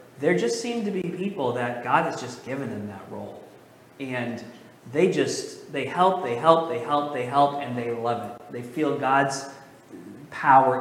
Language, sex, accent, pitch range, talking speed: English, male, American, 130-185 Hz, 185 wpm